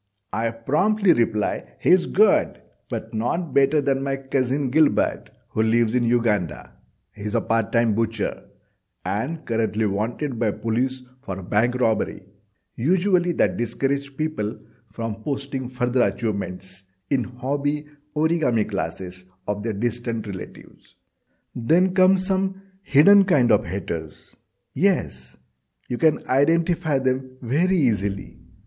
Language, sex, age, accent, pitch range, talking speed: Marathi, male, 50-69, native, 105-140 Hz, 130 wpm